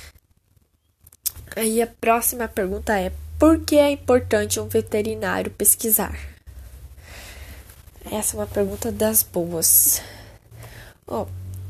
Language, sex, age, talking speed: Persian, female, 10-29, 95 wpm